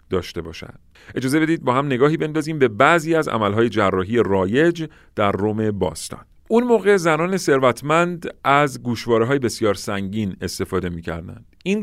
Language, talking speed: Persian, 145 wpm